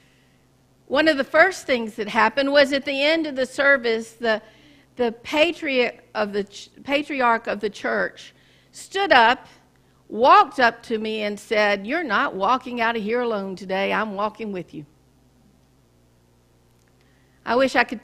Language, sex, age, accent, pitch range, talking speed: English, female, 50-69, American, 200-280 Hz, 155 wpm